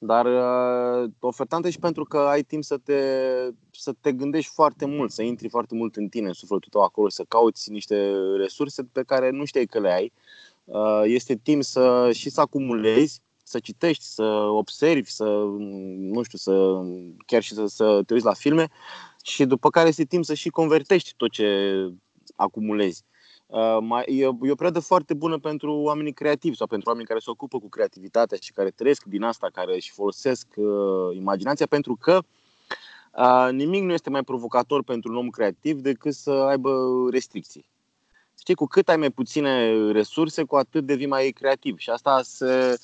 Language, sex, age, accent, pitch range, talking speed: Romanian, male, 20-39, native, 110-150 Hz, 175 wpm